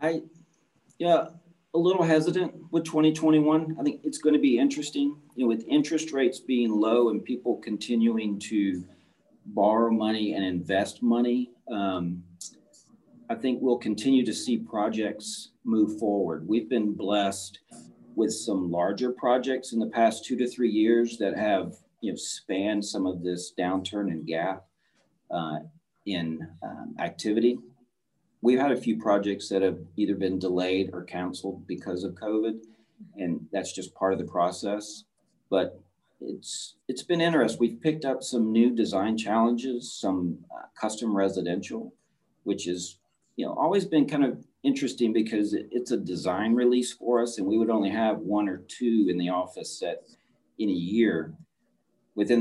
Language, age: English, 40-59